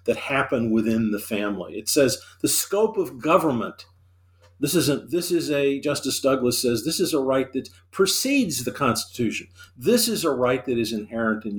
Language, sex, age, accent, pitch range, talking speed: English, male, 50-69, American, 95-125 Hz, 180 wpm